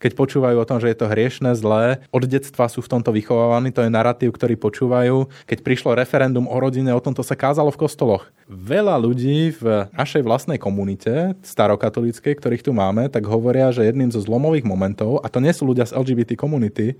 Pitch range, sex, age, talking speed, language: 115-135 Hz, male, 20-39, 200 wpm, Slovak